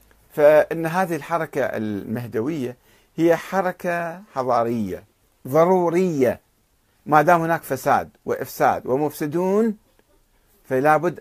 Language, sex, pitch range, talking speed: Arabic, male, 120-180 Hz, 80 wpm